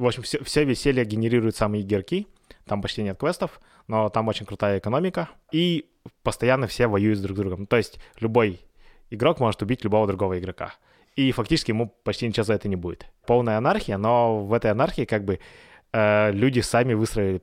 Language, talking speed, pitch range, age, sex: Russian, 185 wpm, 100-130 Hz, 20-39, male